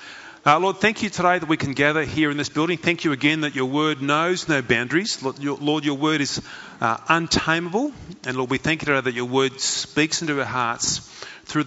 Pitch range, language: 125-160 Hz, English